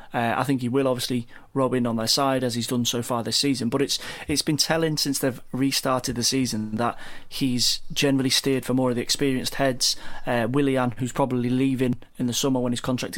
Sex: male